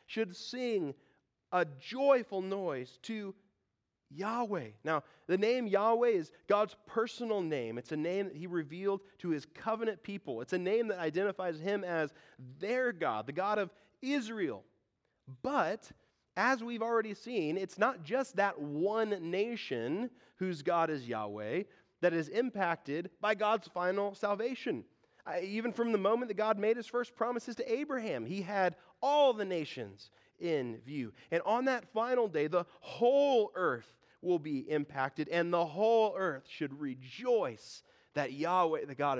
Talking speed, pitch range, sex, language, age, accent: 155 wpm, 145-225 Hz, male, English, 30-49, American